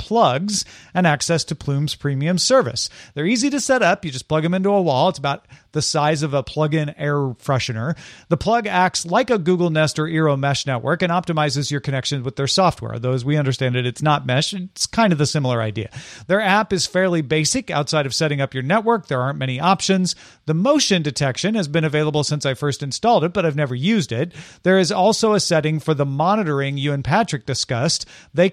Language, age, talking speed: English, 40-59, 220 wpm